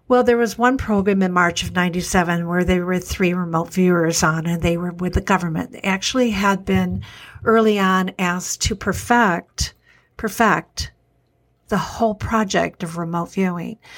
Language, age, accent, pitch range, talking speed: English, 60-79, American, 180-215 Hz, 165 wpm